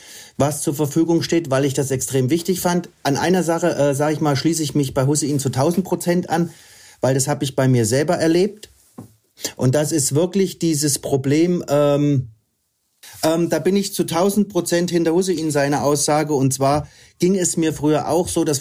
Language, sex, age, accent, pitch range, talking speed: German, male, 40-59, German, 135-170 Hz, 195 wpm